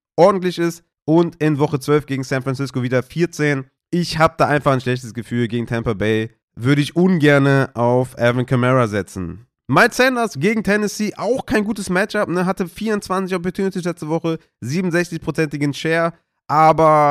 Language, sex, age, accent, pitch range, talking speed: German, male, 30-49, German, 130-165 Hz, 160 wpm